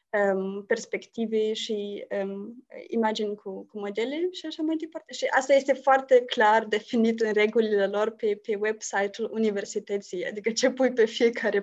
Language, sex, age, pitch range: Romanian, female, 20-39, 210-250 Hz